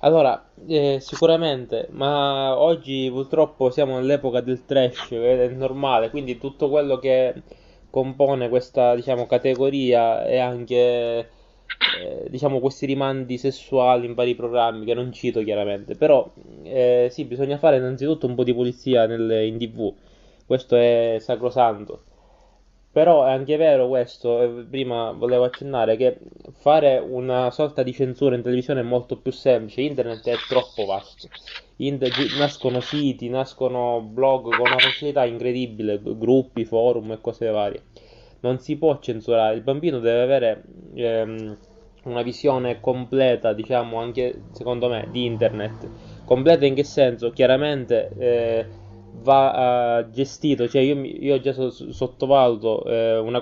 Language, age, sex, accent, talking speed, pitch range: Italian, 20-39, male, native, 135 wpm, 120-135 Hz